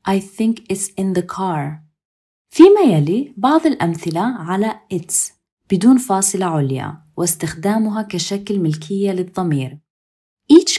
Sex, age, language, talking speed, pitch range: female, 20-39, Arabic, 110 wpm, 165-235 Hz